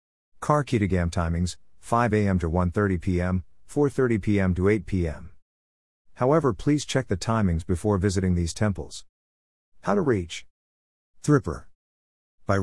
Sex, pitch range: male, 75-105 Hz